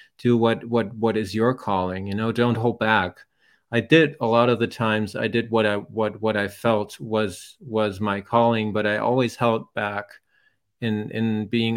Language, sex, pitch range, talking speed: English, male, 100-115 Hz, 200 wpm